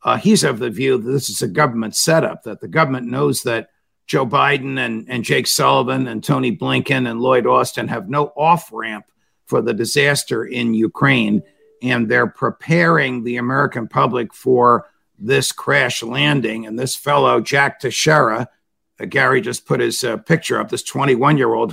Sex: male